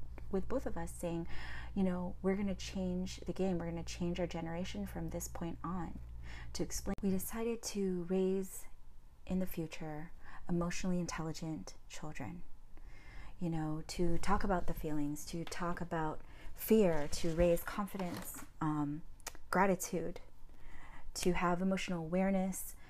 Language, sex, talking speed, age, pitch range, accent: English, female, 140 wpm, 30-49, 155-185 Hz, American